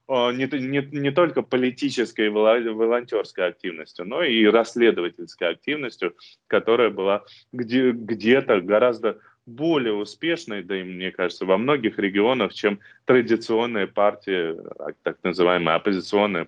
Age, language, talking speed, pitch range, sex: 20-39, Russian, 115 wpm, 95-120 Hz, male